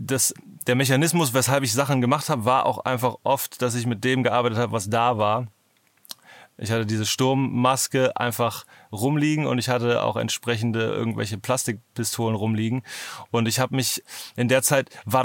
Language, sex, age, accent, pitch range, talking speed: German, male, 30-49, German, 115-130 Hz, 165 wpm